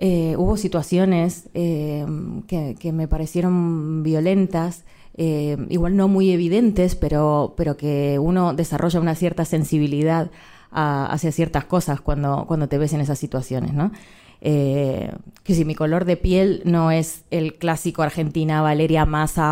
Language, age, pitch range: Spanish, 20-39, 155-200 Hz